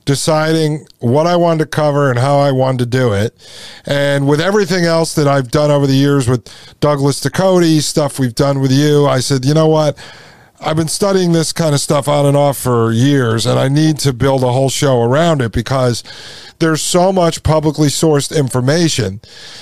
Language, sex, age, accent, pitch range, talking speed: English, male, 50-69, American, 140-170 Hz, 200 wpm